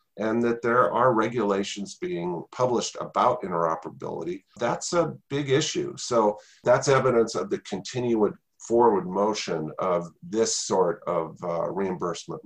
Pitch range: 90-120 Hz